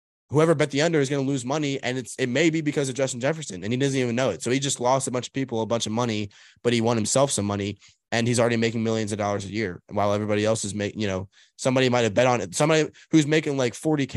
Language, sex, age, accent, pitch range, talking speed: English, male, 20-39, American, 105-130 Hz, 290 wpm